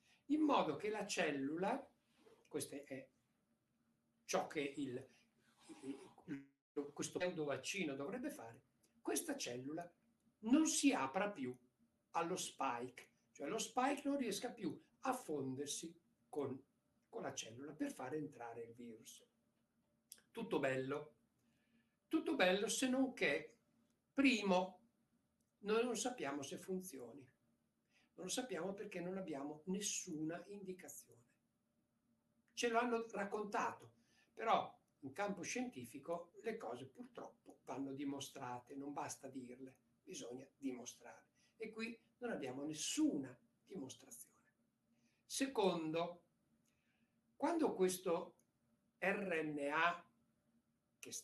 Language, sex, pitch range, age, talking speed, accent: Italian, male, 140-215 Hz, 60-79, 100 wpm, native